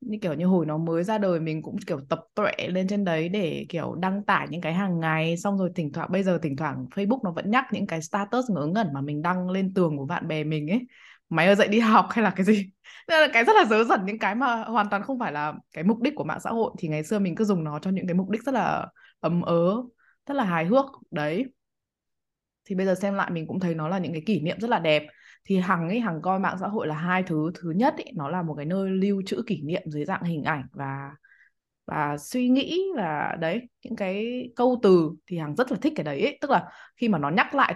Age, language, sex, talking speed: 20-39, Vietnamese, female, 270 wpm